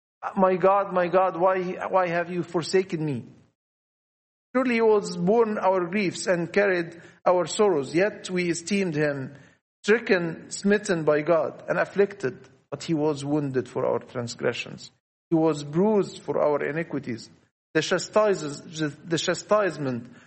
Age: 50-69